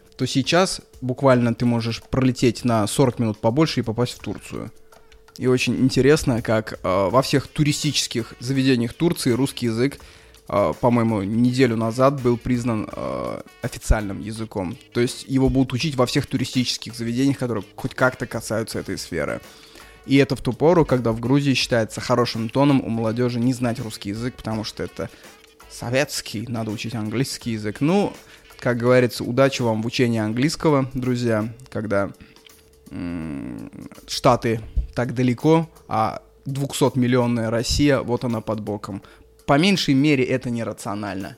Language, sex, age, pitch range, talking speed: Russian, male, 20-39, 110-135 Hz, 145 wpm